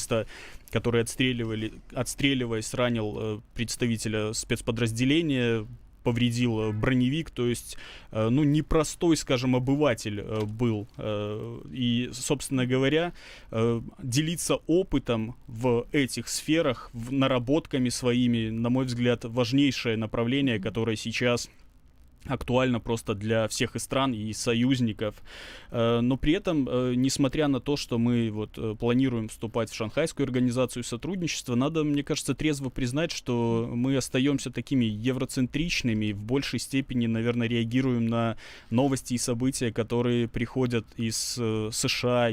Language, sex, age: Russian, male, 20-39